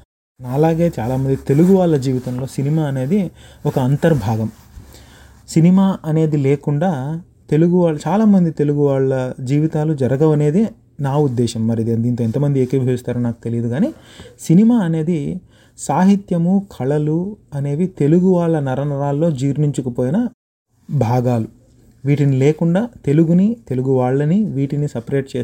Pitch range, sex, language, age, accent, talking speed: 120-155 Hz, male, English, 30-49, Indian, 85 wpm